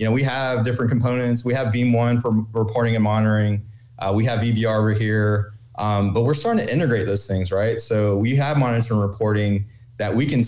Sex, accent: male, American